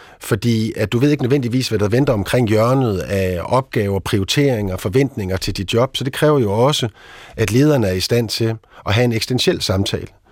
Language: Danish